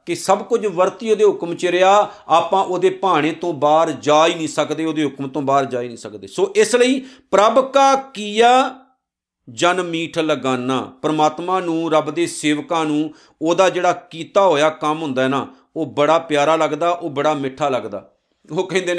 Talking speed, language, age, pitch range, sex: 180 wpm, Punjabi, 50-69, 145-185 Hz, male